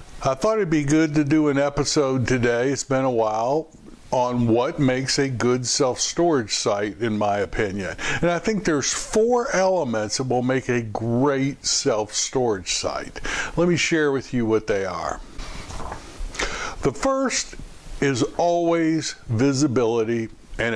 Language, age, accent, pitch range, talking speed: English, 60-79, American, 120-155 Hz, 145 wpm